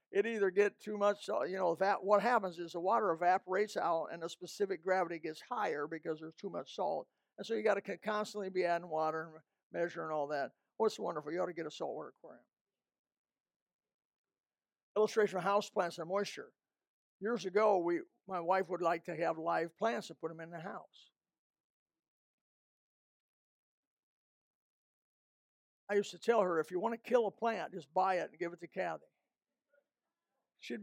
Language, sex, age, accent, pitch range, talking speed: English, male, 50-69, American, 175-215 Hz, 180 wpm